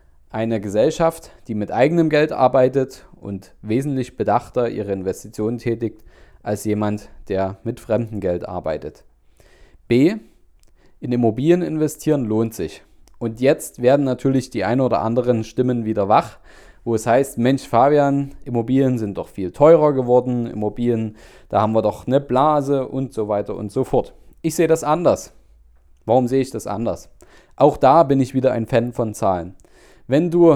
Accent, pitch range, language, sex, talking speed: German, 110-145 Hz, German, male, 160 wpm